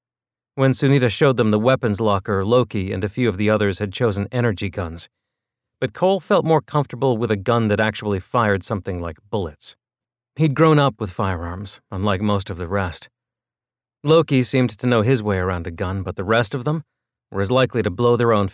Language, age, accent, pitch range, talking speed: English, 40-59, American, 100-125 Hz, 205 wpm